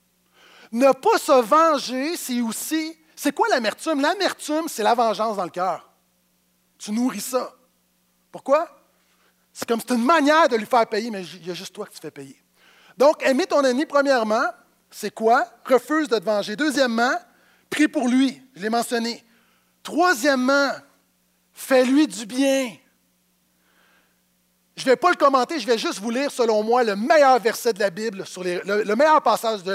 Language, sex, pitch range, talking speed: French, male, 185-270 Hz, 180 wpm